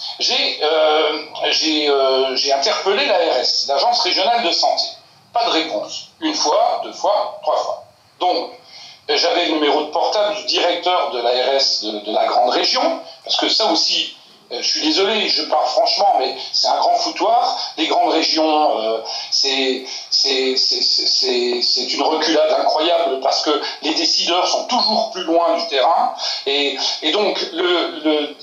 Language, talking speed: French, 165 wpm